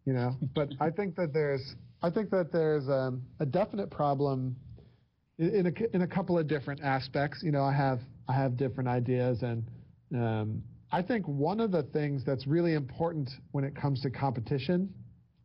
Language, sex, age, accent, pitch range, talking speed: English, male, 40-59, American, 125-150 Hz, 185 wpm